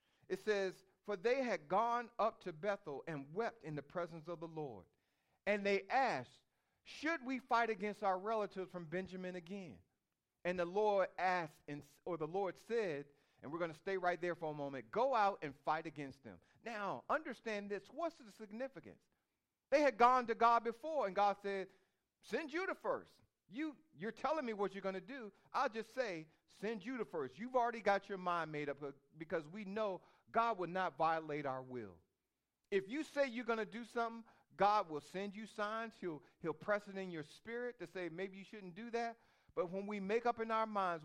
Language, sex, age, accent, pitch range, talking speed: English, male, 40-59, American, 170-230 Hz, 200 wpm